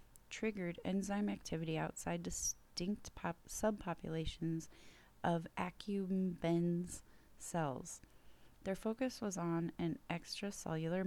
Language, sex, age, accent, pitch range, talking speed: English, female, 30-49, American, 155-185 Hz, 85 wpm